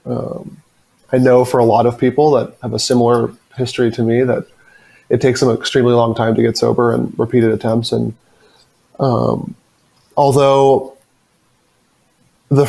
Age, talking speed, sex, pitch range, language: 20-39, 155 wpm, male, 115-130 Hz, English